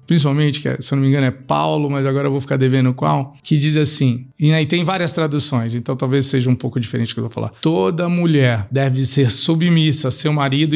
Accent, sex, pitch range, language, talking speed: Brazilian, male, 140-190 Hz, Portuguese, 245 wpm